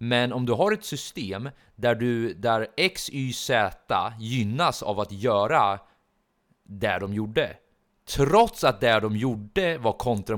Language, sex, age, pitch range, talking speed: Swedish, male, 30-49, 100-130 Hz, 140 wpm